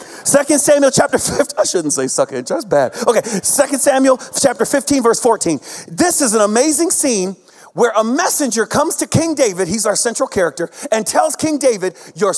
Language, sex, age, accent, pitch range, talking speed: English, male, 40-59, American, 195-285 Hz, 190 wpm